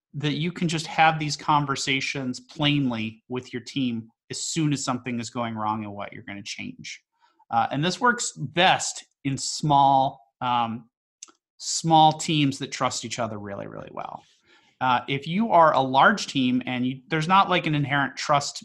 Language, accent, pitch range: English, American, 120-155 Hz